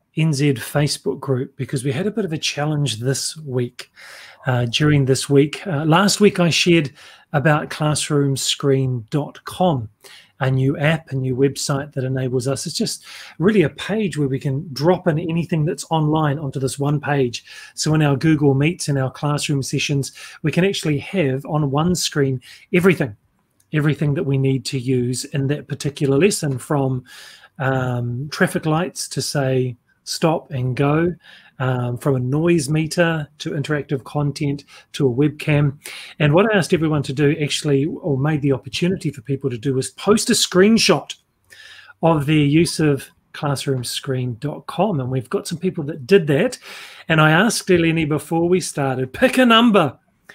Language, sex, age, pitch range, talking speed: English, male, 30-49, 135-165 Hz, 165 wpm